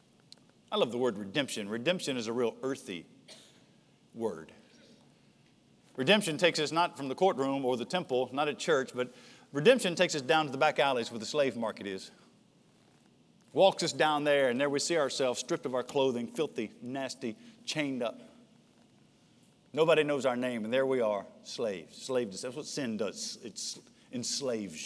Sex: male